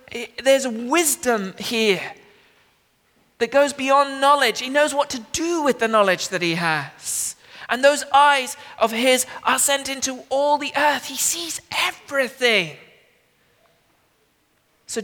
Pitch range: 220-290 Hz